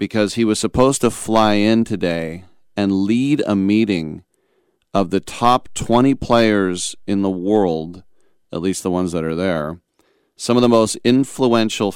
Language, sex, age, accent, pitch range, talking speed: English, male, 40-59, American, 95-115 Hz, 160 wpm